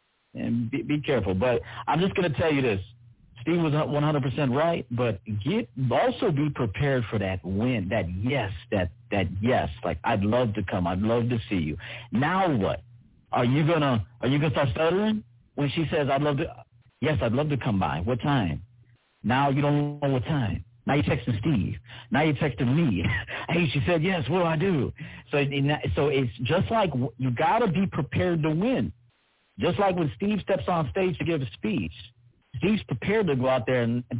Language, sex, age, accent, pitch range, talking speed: English, male, 50-69, American, 115-155 Hz, 200 wpm